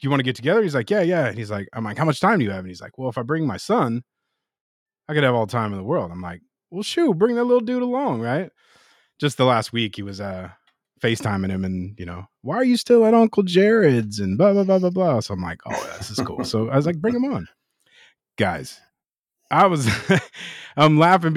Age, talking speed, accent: 30-49, 260 wpm, American